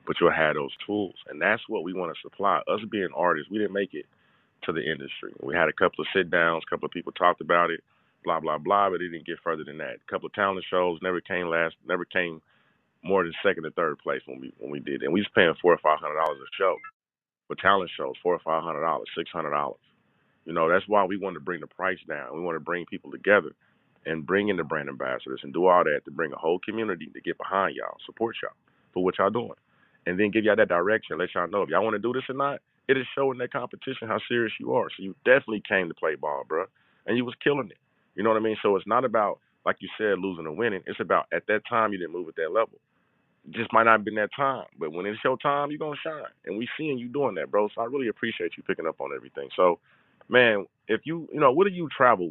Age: 30-49